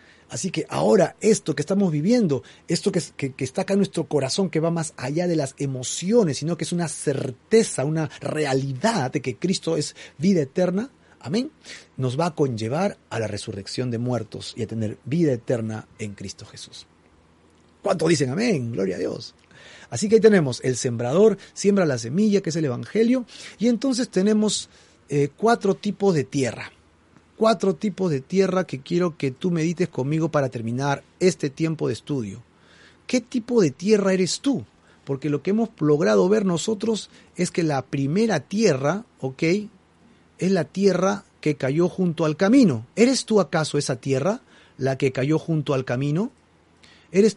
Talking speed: 170 wpm